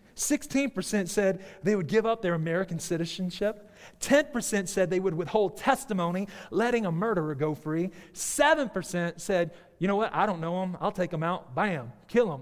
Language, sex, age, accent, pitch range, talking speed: English, male, 30-49, American, 170-225 Hz, 175 wpm